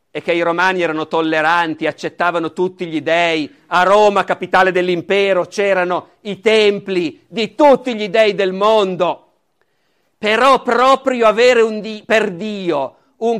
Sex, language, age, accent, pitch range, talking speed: male, Italian, 50-69, native, 175-220 Hz, 140 wpm